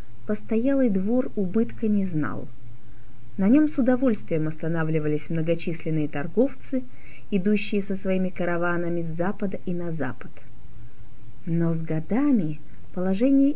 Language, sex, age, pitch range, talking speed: Russian, female, 30-49, 155-225 Hz, 110 wpm